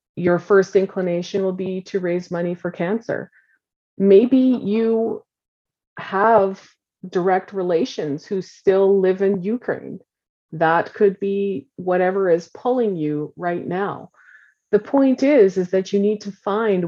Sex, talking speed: female, 135 wpm